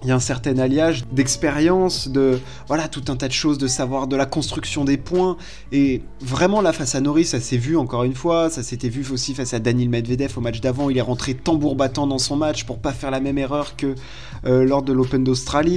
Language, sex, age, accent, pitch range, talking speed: French, male, 20-39, French, 125-150 Hz, 245 wpm